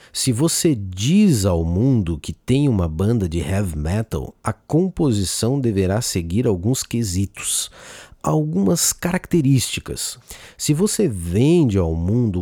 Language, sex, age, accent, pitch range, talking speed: Portuguese, male, 50-69, Brazilian, 95-150 Hz, 120 wpm